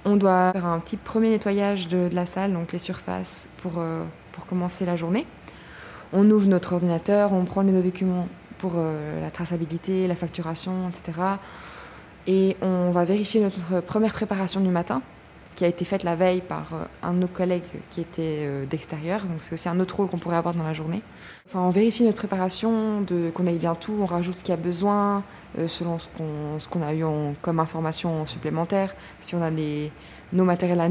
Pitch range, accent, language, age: 170-195 Hz, French, French, 20-39